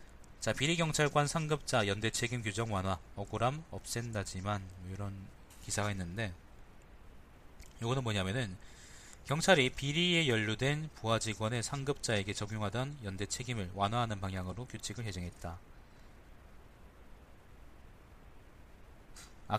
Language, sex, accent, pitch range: Korean, male, native, 95-130 Hz